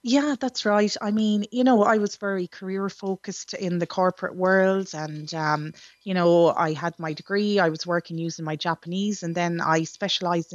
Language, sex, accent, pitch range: English, female, Irish, 165-190 Hz